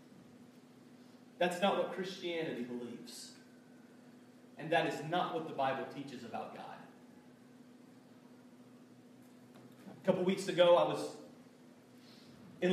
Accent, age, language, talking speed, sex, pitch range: American, 30-49, English, 105 wpm, male, 190-245 Hz